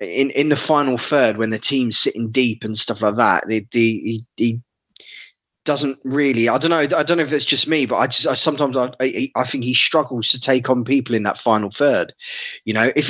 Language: English